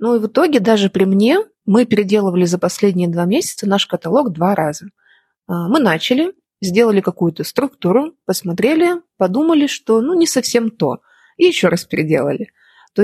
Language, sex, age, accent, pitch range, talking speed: Russian, female, 20-39, native, 185-255 Hz, 155 wpm